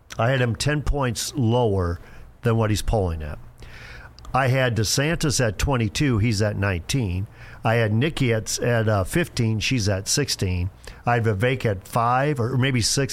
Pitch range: 110-140 Hz